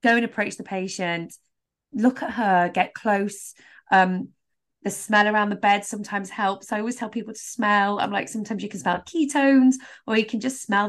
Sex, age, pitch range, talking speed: female, 20-39, 185-245 Hz, 200 wpm